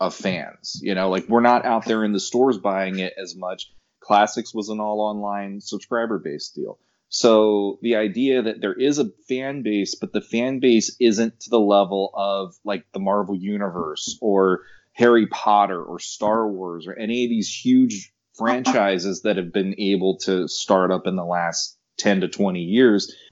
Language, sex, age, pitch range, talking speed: English, male, 30-49, 100-120 Hz, 185 wpm